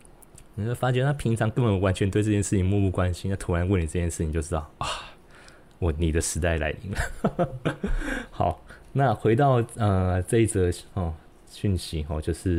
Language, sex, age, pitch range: Chinese, male, 20-39, 80-95 Hz